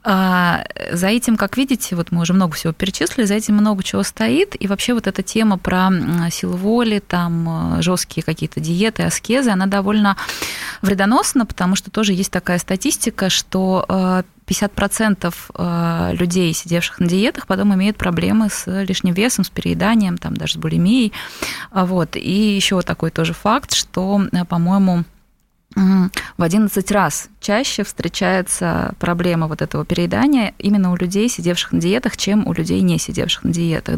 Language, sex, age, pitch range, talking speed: Russian, female, 20-39, 175-205 Hz, 150 wpm